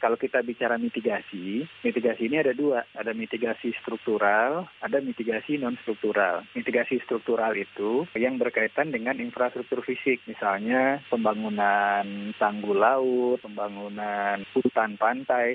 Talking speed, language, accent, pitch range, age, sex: 110 wpm, Indonesian, native, 105-125 Hz, 20-39, male